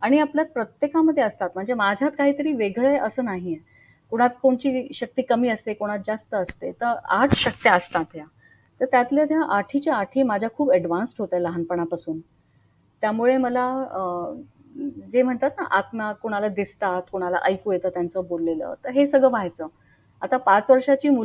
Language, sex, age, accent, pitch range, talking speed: Marathi, female, 30-49, native, 185-255 Hz, 75 wpm